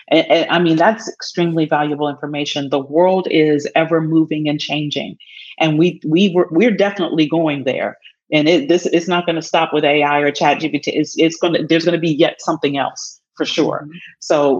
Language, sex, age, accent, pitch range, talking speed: English, female, 40-59, American, 160-195 Hz, 195 wpm